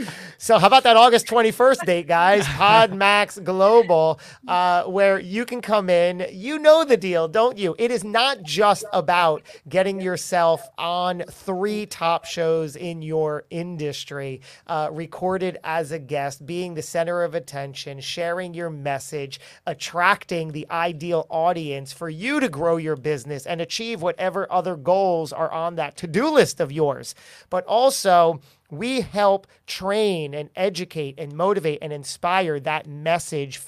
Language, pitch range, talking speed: English, 155-205 Hz, 150 wpm